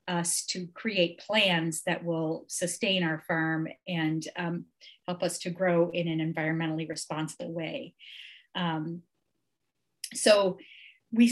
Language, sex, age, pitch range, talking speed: English, female, 30-49, 170-195 Hz, 120 wpm